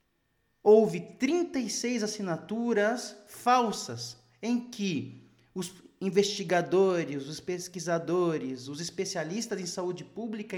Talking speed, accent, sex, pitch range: 85 wpm, Brazilian, male, 155-235 Hz